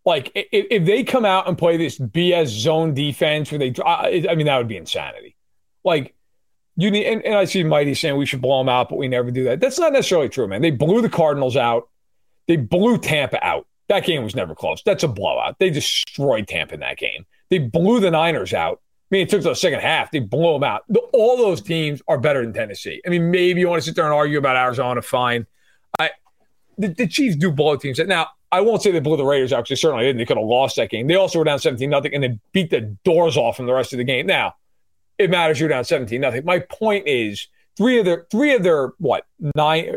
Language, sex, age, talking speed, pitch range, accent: English, male, 40-59, 250 wpm, 135-195 Hz, American